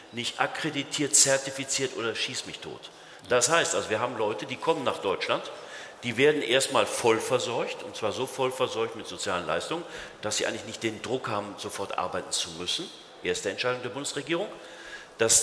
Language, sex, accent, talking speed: German, male, German, 180 wpm